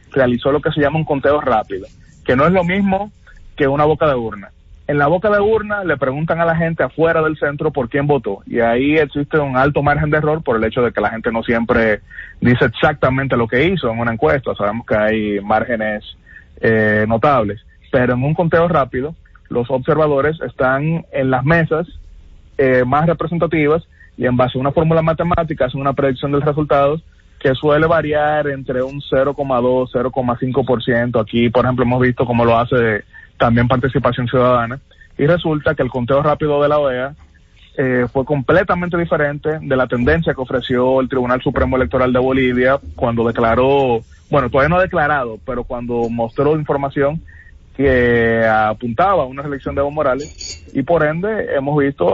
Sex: male